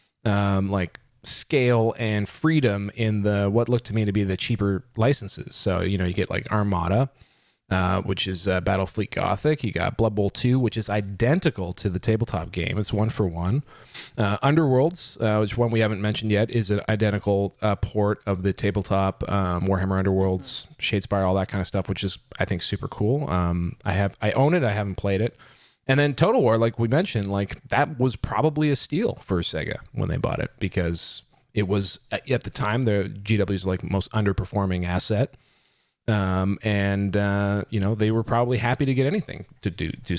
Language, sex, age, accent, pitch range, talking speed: English, male, 30-49, American, 95-120 Hz, 200 wpm